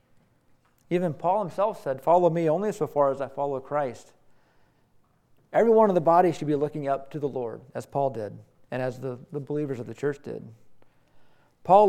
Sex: male